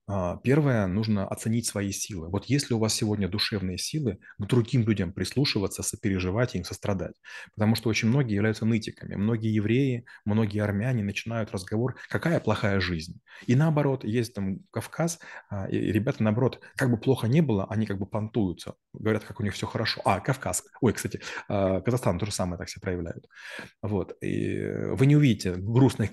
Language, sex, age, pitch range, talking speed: Russian, male, 30-49, 100-120 Hz, 170 wpm